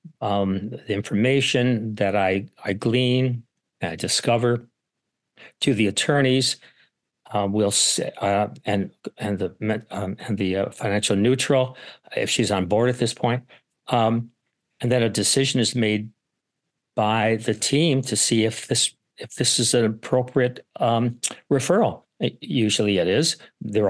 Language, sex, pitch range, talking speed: English, male, 105-125 Hz, 150 wpm